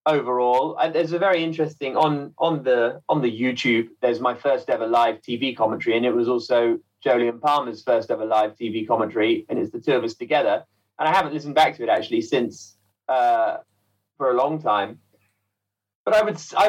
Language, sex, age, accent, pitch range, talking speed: English, male, 30-49, British, 110-155 Hz, 200 wpm